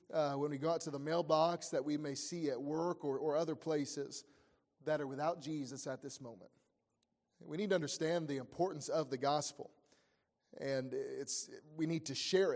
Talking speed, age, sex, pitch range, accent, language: 190 wpm, 30-49, male, 145-170 Hz, American, English